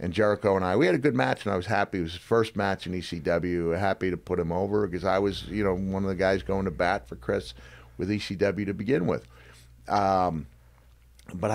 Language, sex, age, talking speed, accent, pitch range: English, male, 40-59, 235 wpm, American, 80-100 Hz